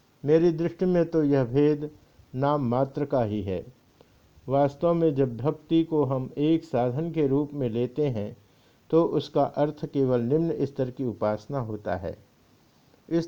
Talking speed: 160 wpm